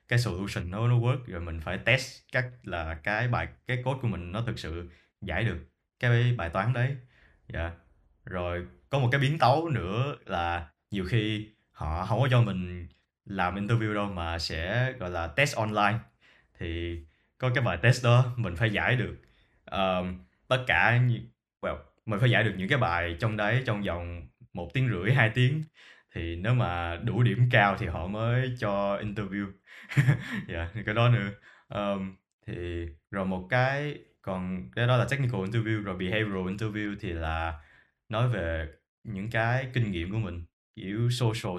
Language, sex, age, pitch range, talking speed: Vietnamese, male, 20-39, 85-120 Hz, 175 wpm